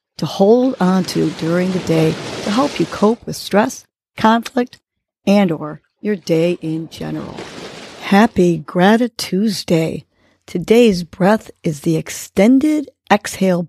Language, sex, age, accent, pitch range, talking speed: English, female, 40-59, American, 160-210 Hz, 125 wpm